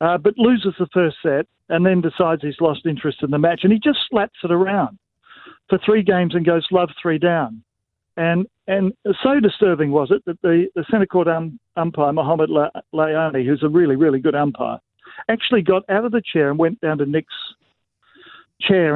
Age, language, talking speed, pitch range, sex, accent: 50-69, English, 195 wpm, 155-185 Hz, male, Australian